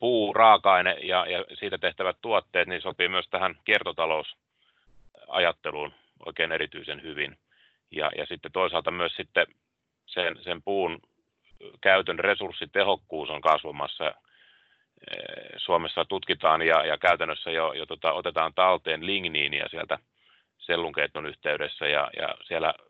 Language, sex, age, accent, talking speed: Finnish, male, 30-49, native, 120 wpm